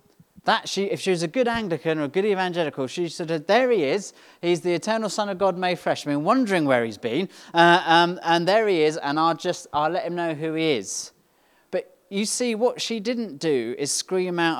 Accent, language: British, English